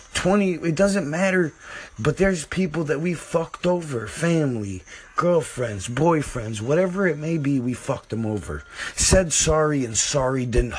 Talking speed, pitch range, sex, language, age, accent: 150 wpm, 110-150 Hz, male, English, 30-49, American